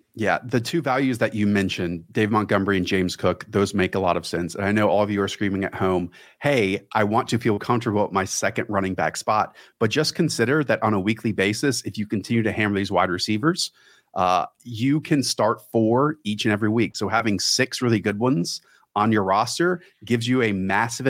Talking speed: 220 wpm